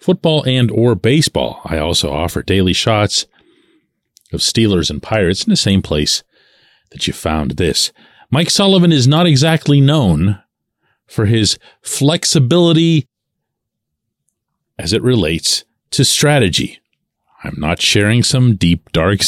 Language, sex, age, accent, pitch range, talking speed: English, male, 40-59, American, 95-145 Hz, 130 wpm